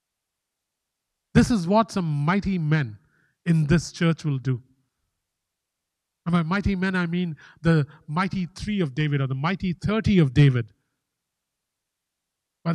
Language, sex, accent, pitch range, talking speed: English, male, Indian, 140-180 Hz, 135 wpm